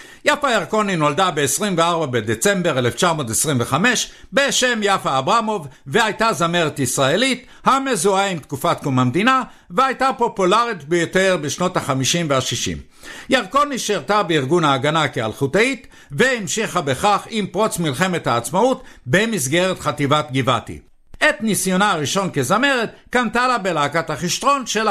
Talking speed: 100 wpm